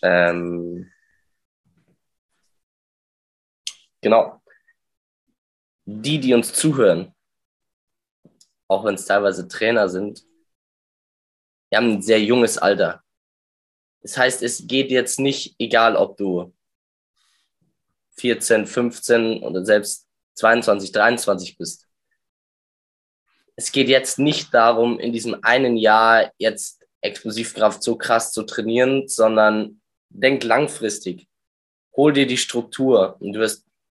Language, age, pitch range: German, 20-39, 105-125 Hz